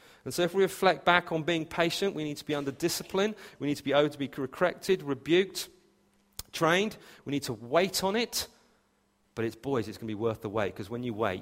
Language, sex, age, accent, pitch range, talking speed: English, male, 40-59, British, 115-145 Hz, 235 wpm